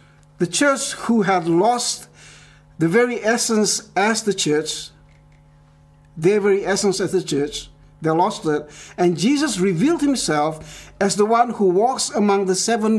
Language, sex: English, male